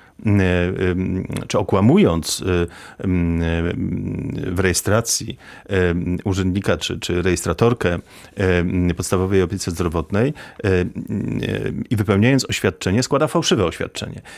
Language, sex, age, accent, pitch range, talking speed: Polish, male, 40-59, native, 90-115 Hz, 70 wpm